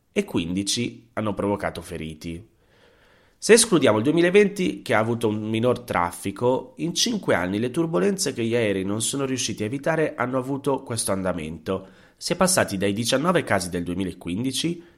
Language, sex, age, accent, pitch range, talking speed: Italian, male, 30-49, native, 90-115 Hz, 160 wpm